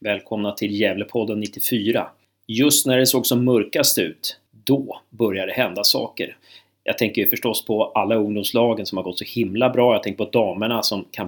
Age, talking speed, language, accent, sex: 30-49, 185 wpm, Swedish, native, male